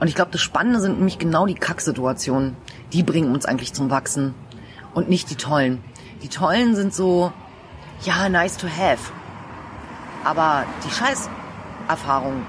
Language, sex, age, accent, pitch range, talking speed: German, female, 30-49, German, 150-190 Hz, 150 wpm